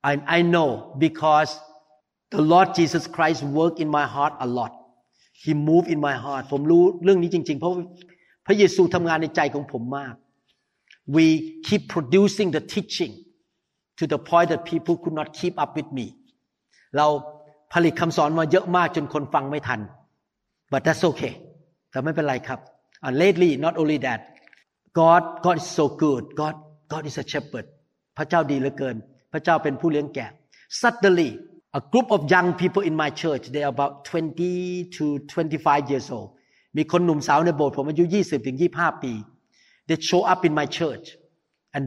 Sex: male